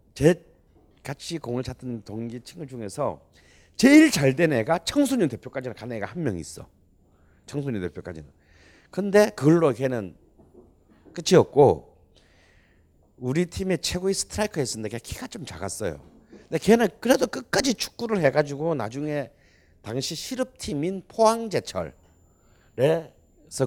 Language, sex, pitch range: Korean, male, 90-140 Hz